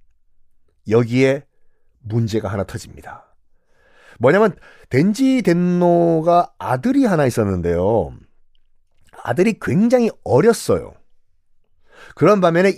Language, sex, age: Korean, male, 40-59